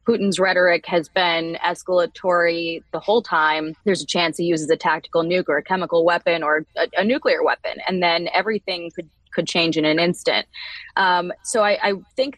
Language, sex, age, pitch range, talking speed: English, female, 20-39, 170-205 Hz, 190 wpm